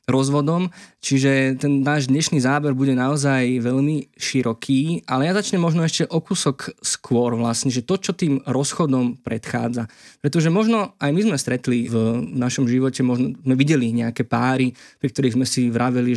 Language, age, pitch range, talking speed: Slovak, 20-39, 125-150 Hz, 165 wpm